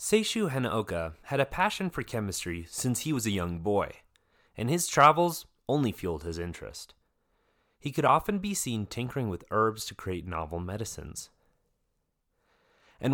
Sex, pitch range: male, 95-150 Hz